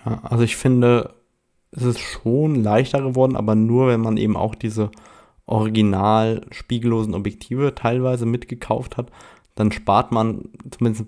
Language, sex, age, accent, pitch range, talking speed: German, male, 20-39, German, 105-120 Hz, 135 wpm